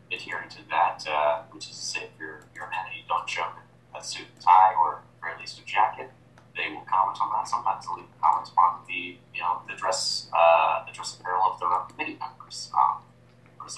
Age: 30-49